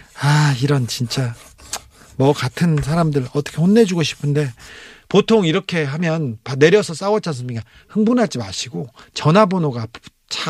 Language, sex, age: Korean, male, 40-59